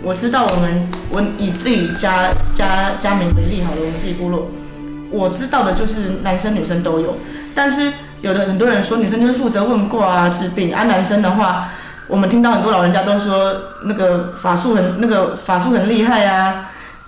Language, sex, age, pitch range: Chinese, female, 20-39, 180-225 Hz